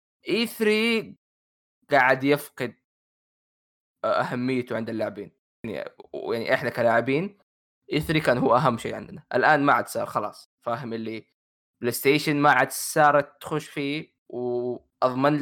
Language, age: Arabic, 20-39